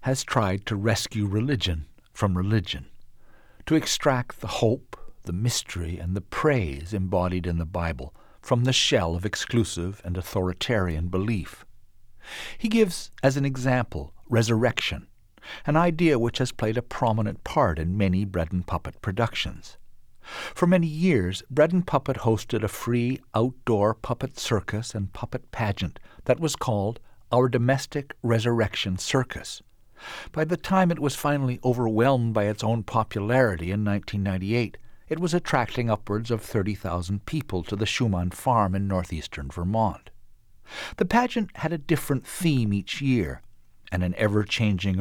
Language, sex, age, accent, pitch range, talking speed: English, male, 60-79, American, 95-130 Hz, 145 wpm